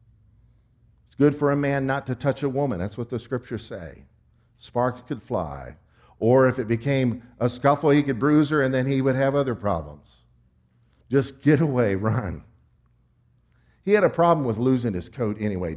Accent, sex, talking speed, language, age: American, male, 180 wpm, English, 50-69